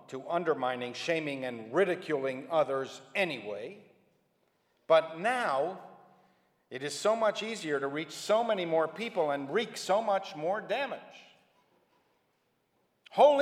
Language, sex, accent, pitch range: English, male, American, 140-220 Hz